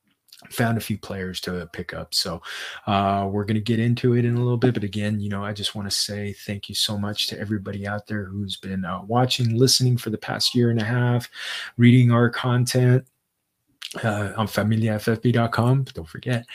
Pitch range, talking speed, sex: 100-120 Hz, 205 wpm, male